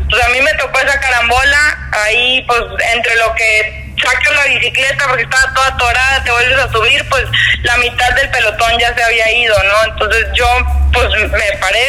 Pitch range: 220-270 Hz